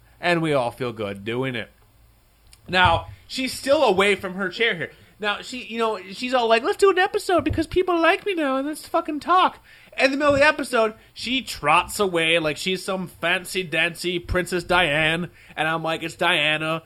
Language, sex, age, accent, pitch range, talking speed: English, male, 30-49, American, 130-185 Hz, 200 wpm